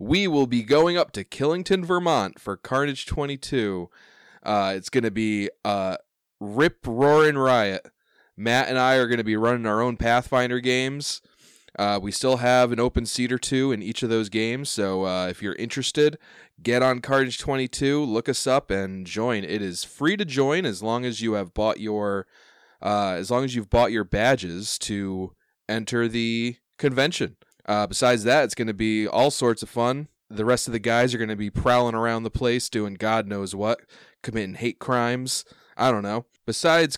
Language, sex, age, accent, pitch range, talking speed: English, male, 20-39, American, 105-135 Hz, 200 wpm